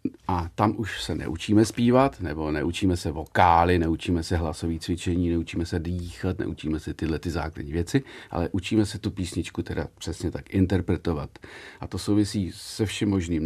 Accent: native